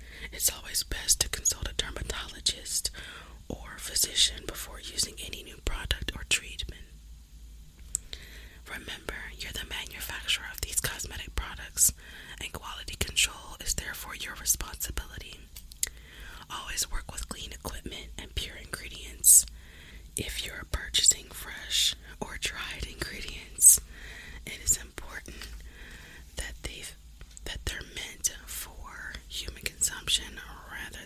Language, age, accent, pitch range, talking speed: English, 20-39, American, 70-80 Hz, 110 wpm